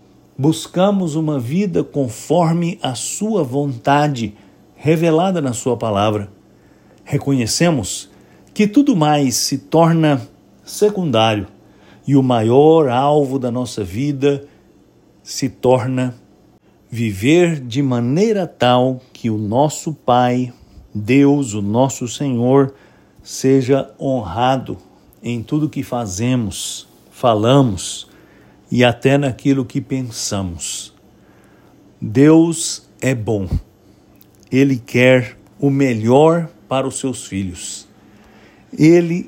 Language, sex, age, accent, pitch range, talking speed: English, male, 60-79, Brazilian, 110-145 Hz, 95 wpm